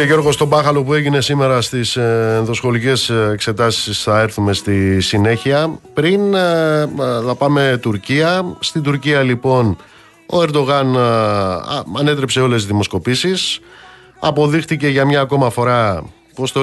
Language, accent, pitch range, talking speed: Greek, native, 110-145 Hz, 125 wpm